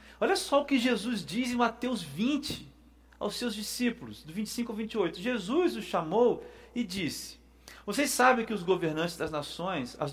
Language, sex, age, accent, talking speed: Portuguese, male, 40-59, Brazilian, 170 wpm